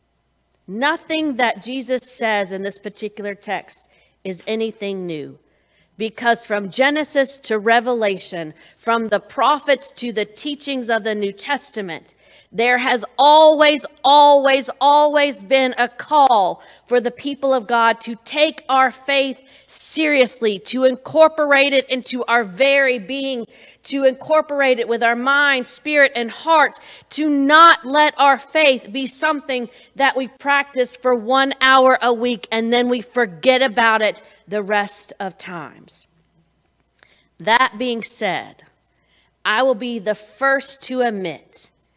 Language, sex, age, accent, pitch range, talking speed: English, female, 40-59, American, 215-275 Hz, 135 wpm